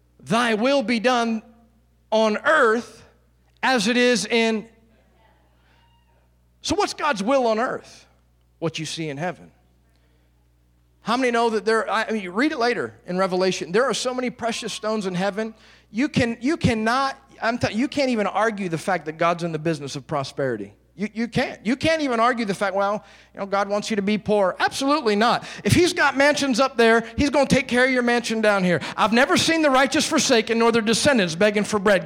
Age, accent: 40-59, American